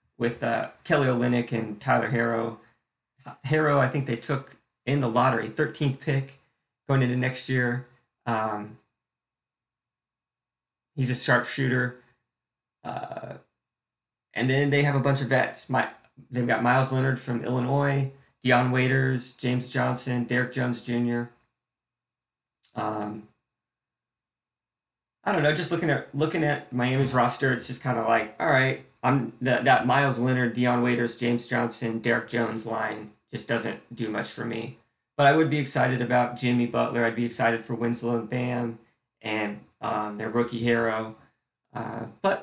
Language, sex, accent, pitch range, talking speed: English, male, American, 115-135 Hz, 150 wpm